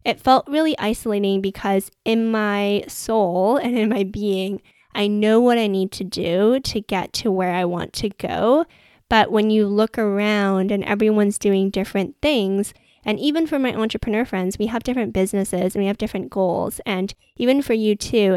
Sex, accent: female, American